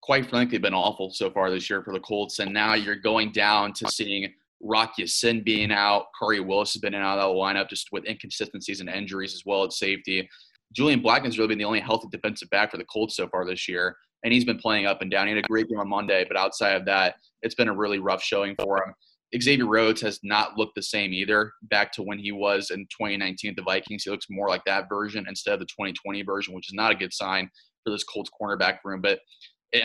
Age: 20-39